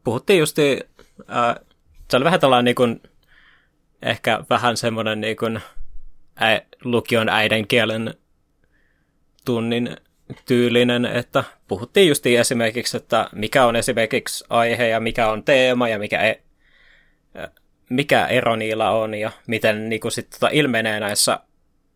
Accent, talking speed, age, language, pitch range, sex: native, 120 wpm, 20-39, Finnish, 110-125 Hz, male